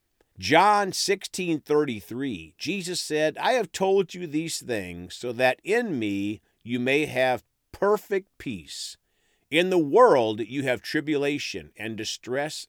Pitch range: 105-160 Hz